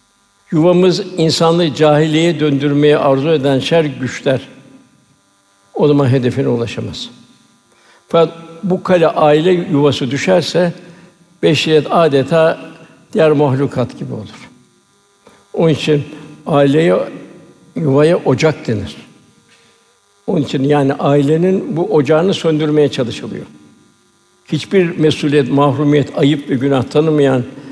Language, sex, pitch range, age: Turkish, male, 140-165 Hz, 60-79